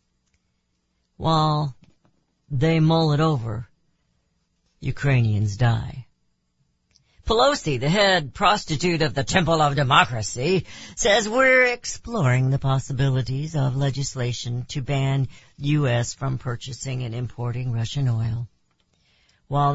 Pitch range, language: 120-160 Hz, English